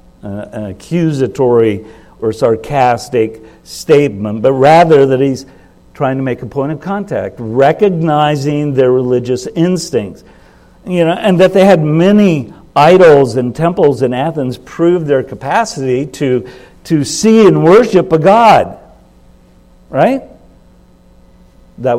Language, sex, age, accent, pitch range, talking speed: English, male, 60-79, American, 115-160 Hz, 125 wpm